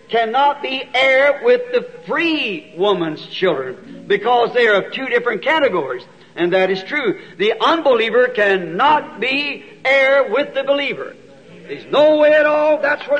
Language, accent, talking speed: English, American, 155 wpm